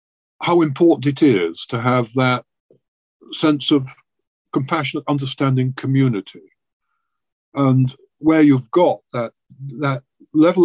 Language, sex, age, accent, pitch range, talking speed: English, male, 50-69, British, 115-145 Hz, 105 wpm